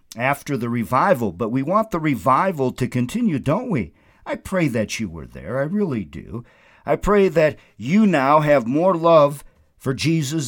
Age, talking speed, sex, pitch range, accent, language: 50-69, 180 wpm, male, 110-150 Hz, American, English